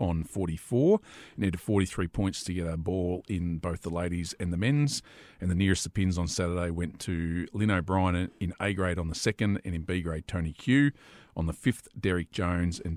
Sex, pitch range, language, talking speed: male, 90-110 Hz, English, 210 wpm